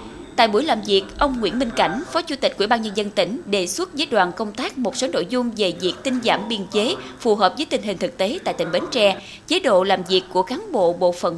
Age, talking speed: 20-39, 275 wpm